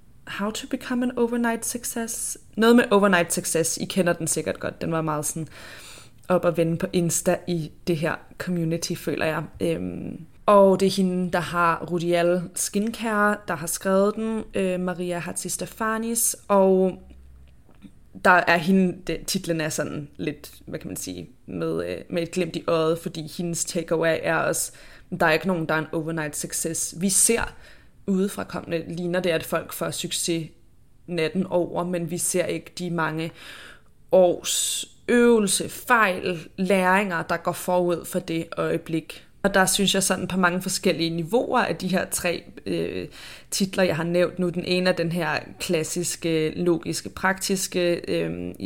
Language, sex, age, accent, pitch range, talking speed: Danish, female, 20-39, native, 165-190 Hz, 165 wpm